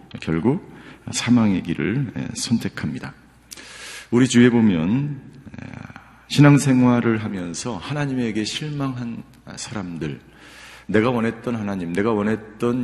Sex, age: male, 40-59